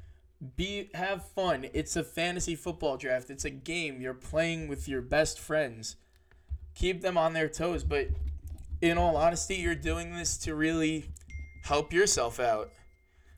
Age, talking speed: 20-39, 155 wpm